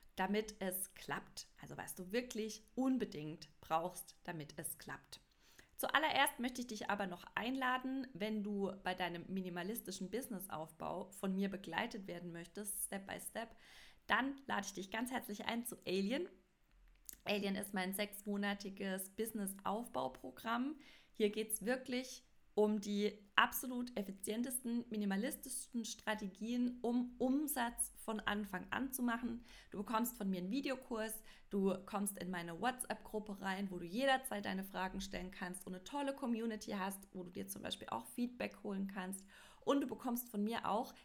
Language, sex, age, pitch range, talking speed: German, female, 20-39, 190-235 Hz, 150 wpm